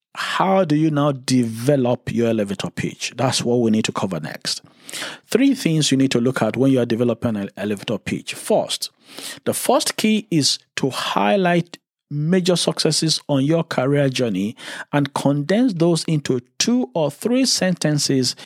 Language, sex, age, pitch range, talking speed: English, male, 50-69, 130-170 Hz, 165 wpm